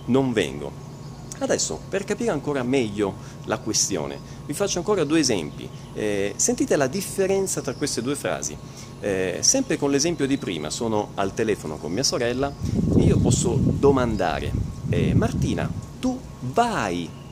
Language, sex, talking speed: Italian, male, 145 wpm